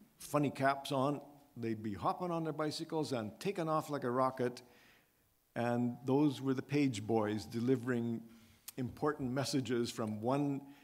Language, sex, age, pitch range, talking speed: English, male, 50-69, 115-140 Hz, 145 wpm